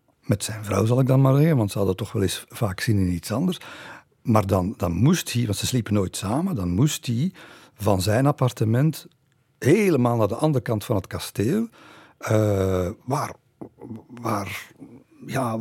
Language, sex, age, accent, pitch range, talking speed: Dutch, male, 50-69, Belgian, 100-130 Hz, 175 wpm